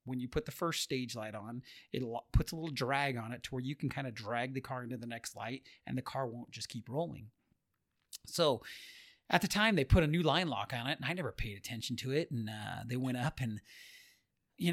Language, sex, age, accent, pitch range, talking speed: English, male, 30-49, American, 125-170 Hz, 250 wpm